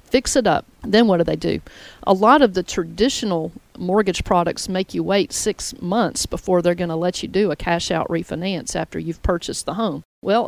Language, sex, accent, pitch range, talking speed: English, female, American, 170-205 Hz, 210 wpm